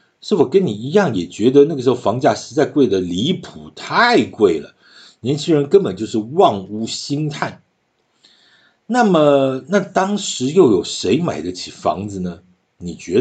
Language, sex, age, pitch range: Chinese, male, 50-69, 110-175 Hz